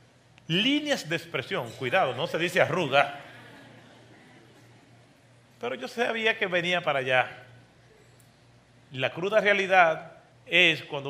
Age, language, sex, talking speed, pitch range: 40-59, Spanish, male, 110 wpm, 135-210 Hz